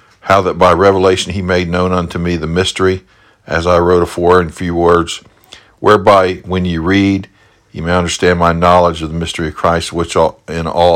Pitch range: 85-100 Hz